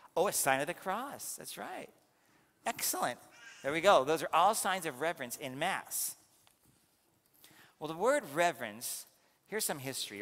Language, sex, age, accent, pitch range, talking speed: English, male, 50-69, American, 125-150 Hz, 160 wpm